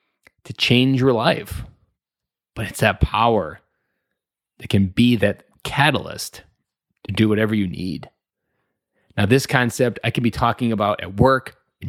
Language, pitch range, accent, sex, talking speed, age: English, 105-130 Hz, American, male, 145 wpm, 20-39